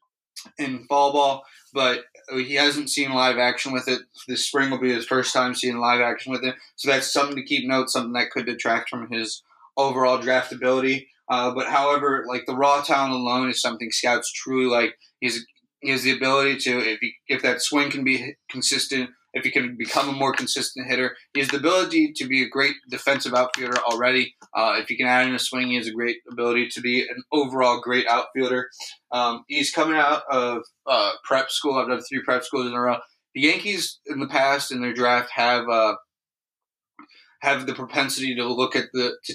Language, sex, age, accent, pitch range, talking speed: English, male, 20-39, American, 125-140 Hz, 210 wpm